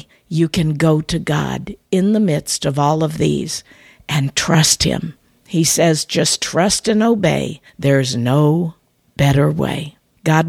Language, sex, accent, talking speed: English, female, American, 150 wpm